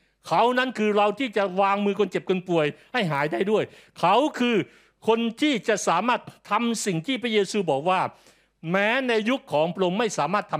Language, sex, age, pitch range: Thai, male, 60-79, 165-245 Hz